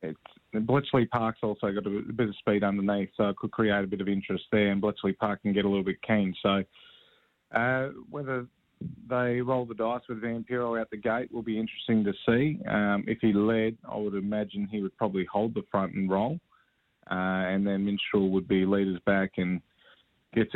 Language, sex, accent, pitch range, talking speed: English, male, Australian, 95-110 Hz, 205 wpm